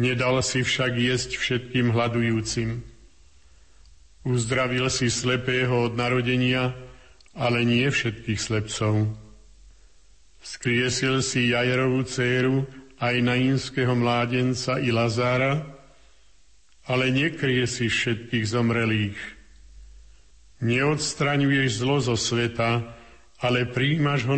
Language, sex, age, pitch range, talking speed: Slovak, male, 50-69, 115-130 Hz, 90 wpm